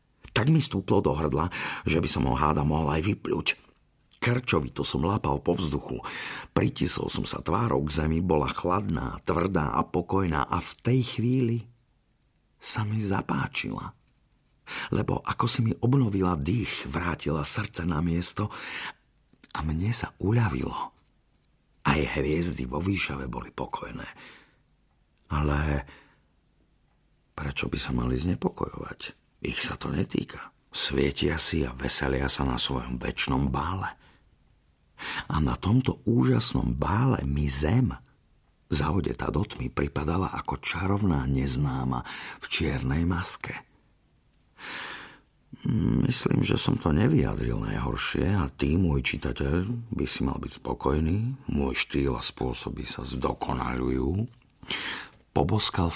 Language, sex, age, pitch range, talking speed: Slovak, male, 50-69, 70-100 Hz, 120 wpm